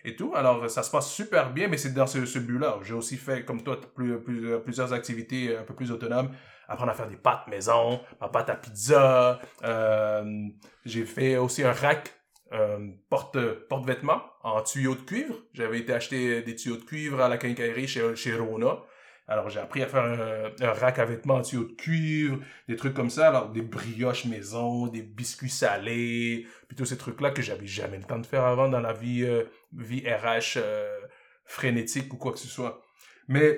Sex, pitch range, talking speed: male, 115-145 Hz, 205 wpm